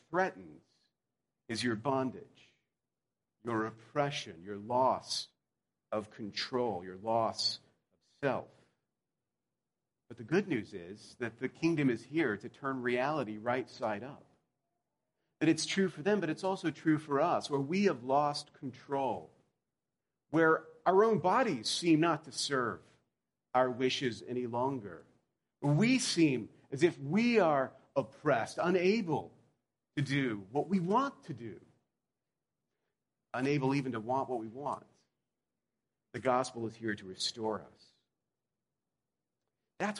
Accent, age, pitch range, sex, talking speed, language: American, 40-59, 120-165 Hz, male, 130 wpm, English